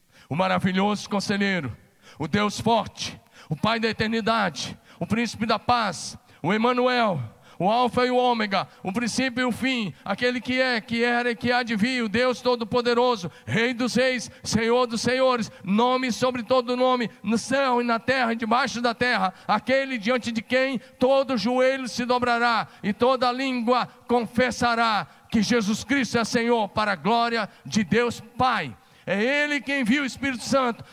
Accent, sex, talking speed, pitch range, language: Brazilian, male, 170 wpm, 220-250 Hz, Portuguese